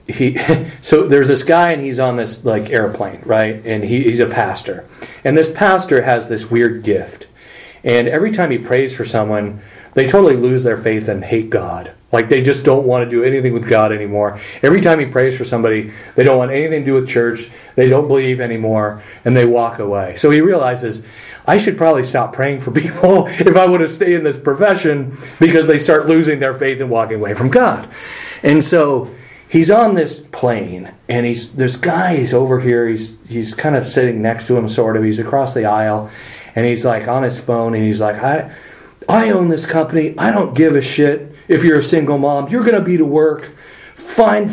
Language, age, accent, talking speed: English, 40-59, American, 210 wpm